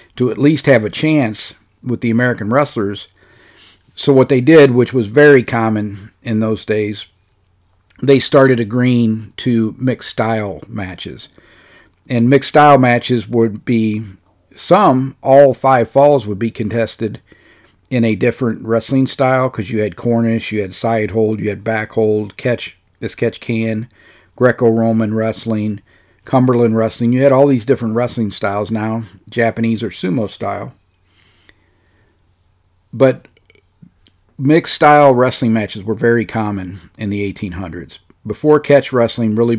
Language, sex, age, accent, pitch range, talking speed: English, male, 50-69, American, 105-125 Hz, 140 wpm